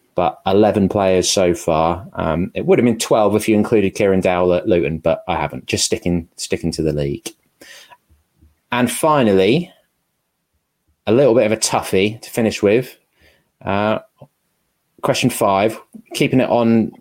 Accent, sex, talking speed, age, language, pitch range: British, male, 155 wpm, 20-39, English, 90-115 Hz